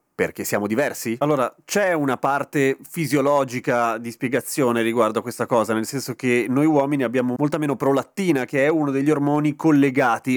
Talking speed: 170 wpm